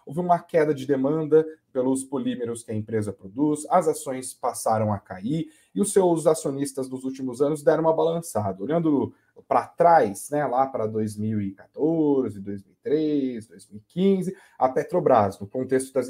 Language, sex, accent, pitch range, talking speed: Portuguese, male, Brazilian, 115-150 Hz, 150 wpm